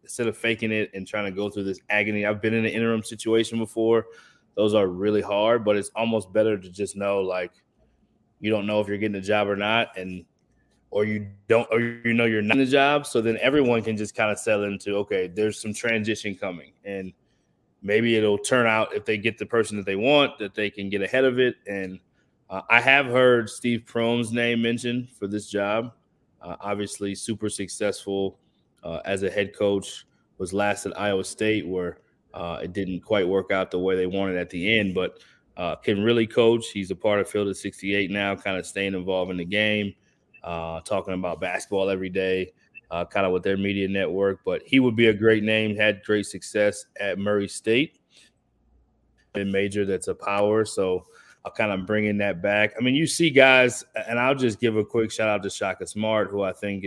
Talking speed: 215 wpm